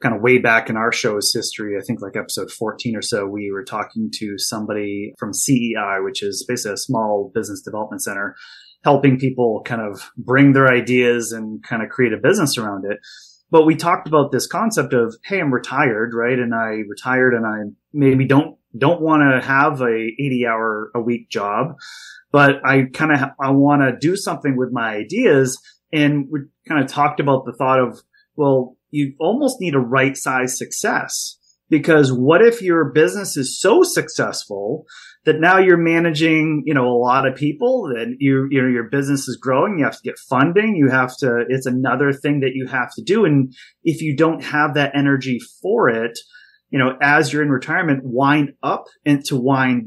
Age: 30-49